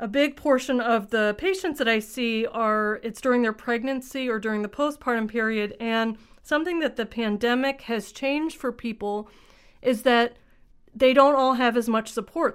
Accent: American